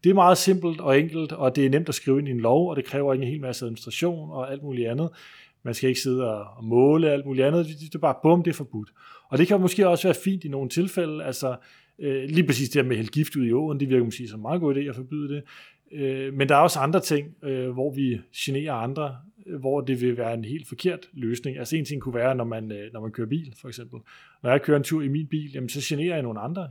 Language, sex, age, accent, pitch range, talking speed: English, male, 30-49, Danish, 125-155 Hz, 270 wpm